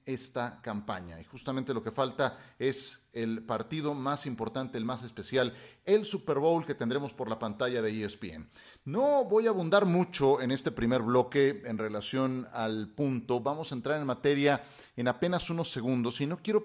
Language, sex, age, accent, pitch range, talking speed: Spanish, male, 40-59, Mexican, 120-165 Hz, 180 wpm